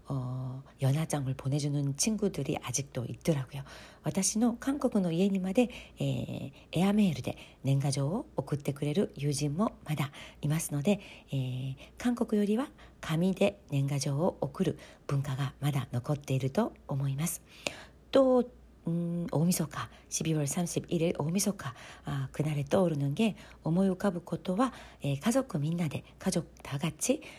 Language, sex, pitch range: Korean, female, 140-215 Hz